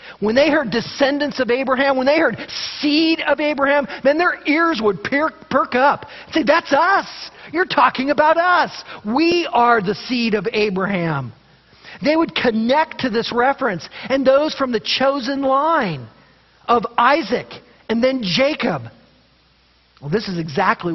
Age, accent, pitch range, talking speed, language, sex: 40-59, American, 180-265 Hz, 150 wpm, English, male